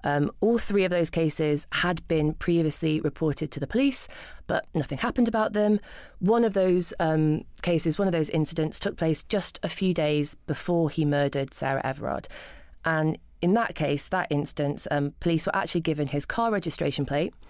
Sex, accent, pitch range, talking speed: female, British, 145-170 Hz, 180 wpm